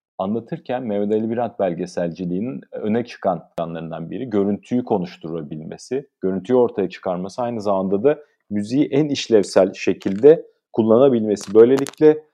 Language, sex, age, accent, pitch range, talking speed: Turkish, male, 40-59, native, 95-135 Hz, 110 wpm